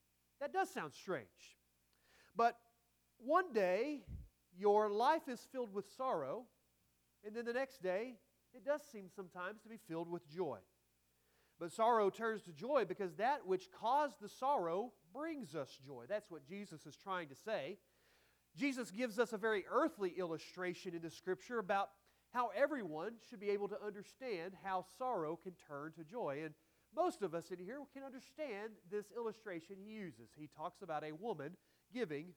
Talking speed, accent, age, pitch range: 165 wpm, American, 40-59, 175-230 Hz